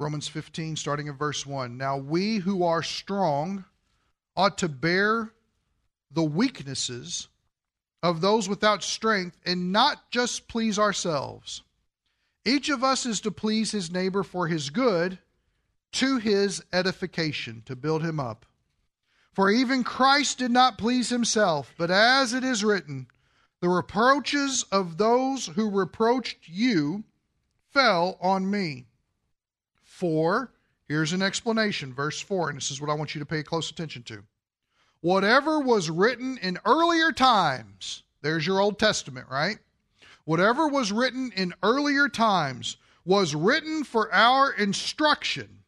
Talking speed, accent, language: 140 wpm, American, English